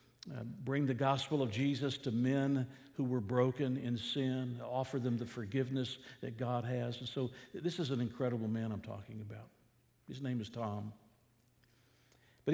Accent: American